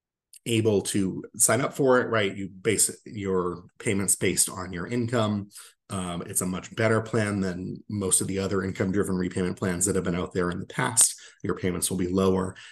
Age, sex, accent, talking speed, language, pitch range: 30-49, male, American, 200 wpm, English, 90-110 Hz